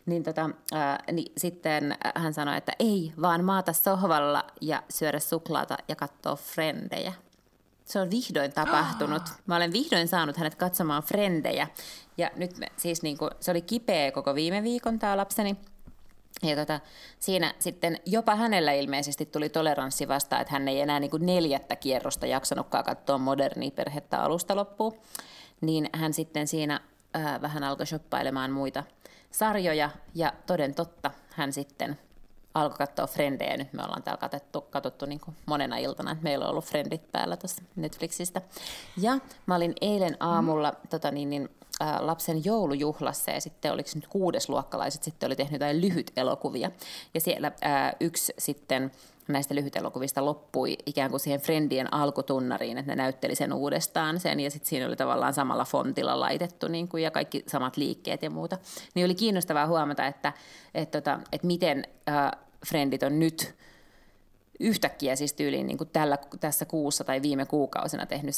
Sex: female